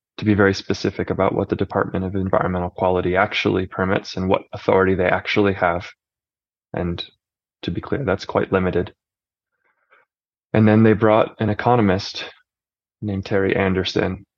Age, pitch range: 20-39, 90-100 Hz